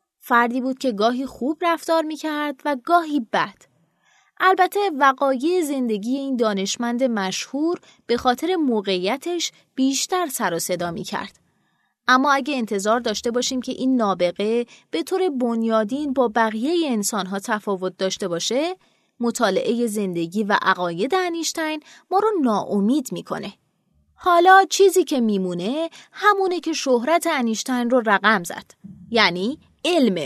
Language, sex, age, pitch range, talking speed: Persian, female, 20-39, 215-310 Hz, 130 wpm